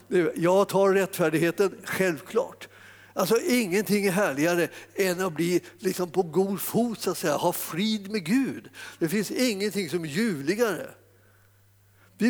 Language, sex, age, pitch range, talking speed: Swedish, male, 50-69, 115-180 Hz, 140 wpm